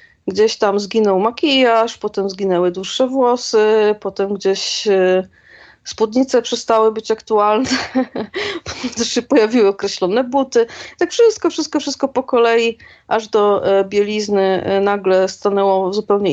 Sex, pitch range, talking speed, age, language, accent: female, 195-235 Hz, 115 wpm, 30-49, Polish, native